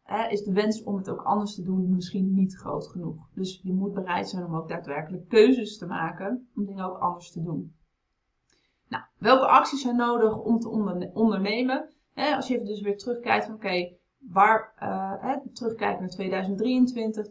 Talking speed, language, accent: 185 wpm, Dutch, Dutch